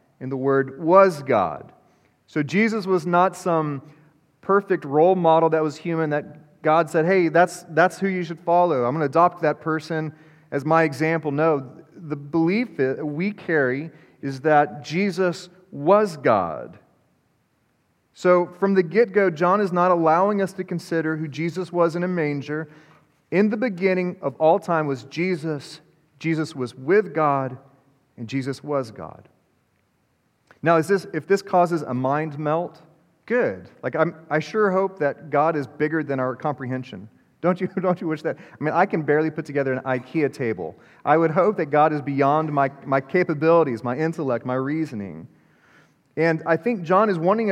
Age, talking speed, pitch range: 30-49, 170 wpm, 145-180 Hz